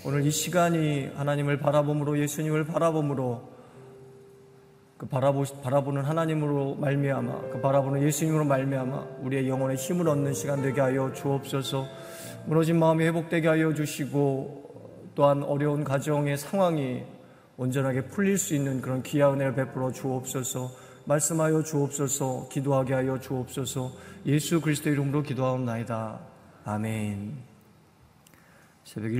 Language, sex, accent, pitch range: Korean, male, native, 110-140 Hz